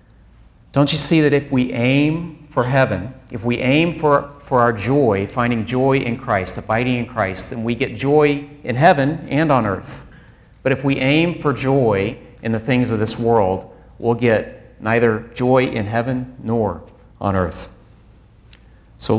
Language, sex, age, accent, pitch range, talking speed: English, male, 40-59, American, 110-135 Hz, 170 wpm